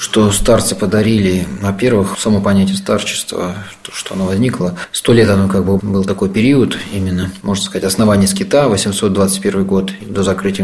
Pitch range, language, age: 95-110 Hz, Russian, 20-39